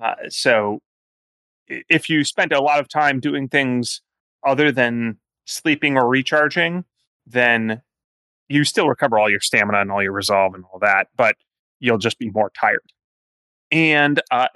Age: 30-49